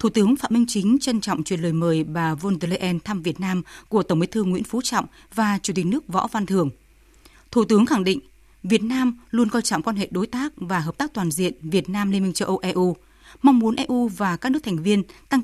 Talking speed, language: 245 wpm, Vietnamese